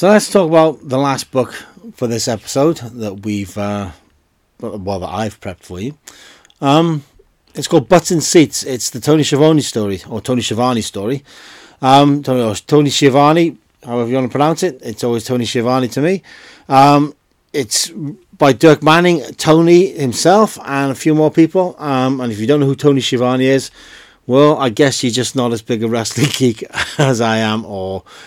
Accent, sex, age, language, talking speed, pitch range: British, male, 40-59, English, 185 wpm, 110-145 Hz